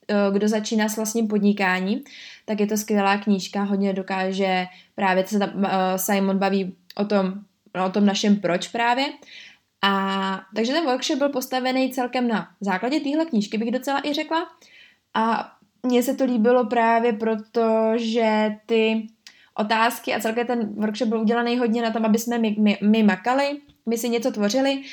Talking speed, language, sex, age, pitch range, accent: 165 wpm, Czech, female, 20-39, 200-230 Hz, native